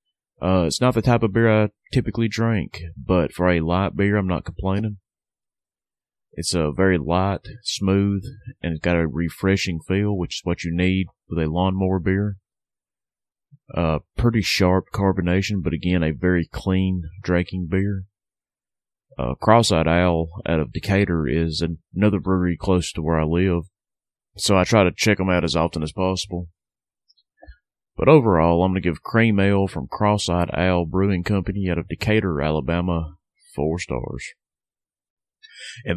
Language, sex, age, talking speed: English, male, 30-49, 155 wpm